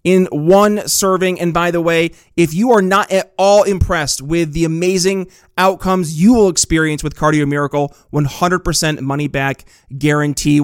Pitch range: 155-190 Hz